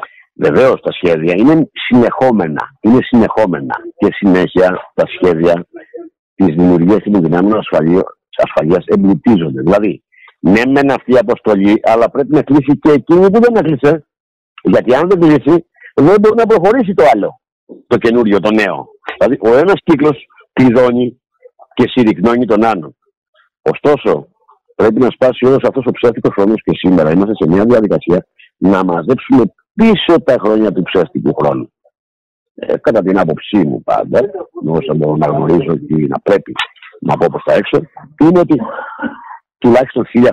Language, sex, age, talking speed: Greek, male, 60-79, 150 wpm